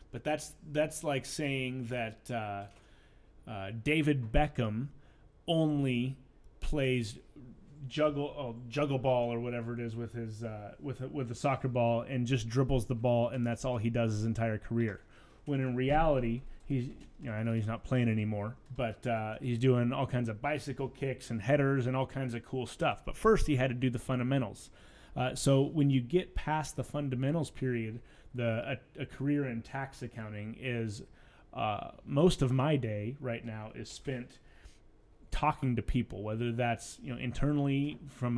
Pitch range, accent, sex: 115-135 Hz, American, male